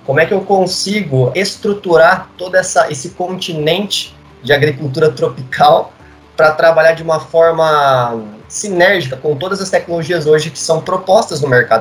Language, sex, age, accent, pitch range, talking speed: Portuguese, male, 20-39, Brazilian, 140-190 Hz, 145 wpm